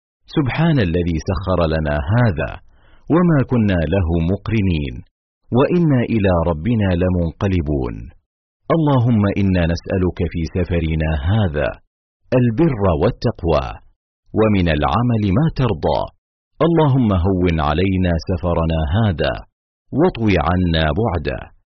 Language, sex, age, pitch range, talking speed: Arabic, male, 50-69, 85-115 Hz, 90 wpm